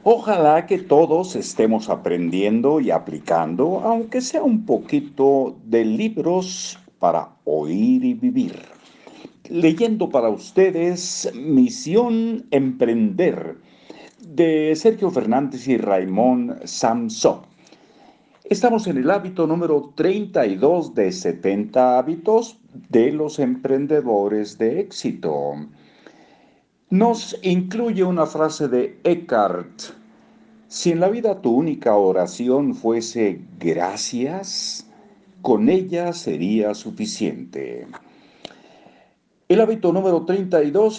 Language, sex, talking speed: Spanish, male, 95 wpm